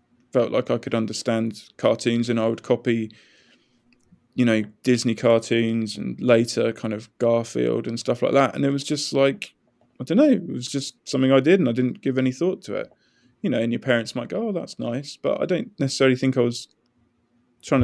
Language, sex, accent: English, male, British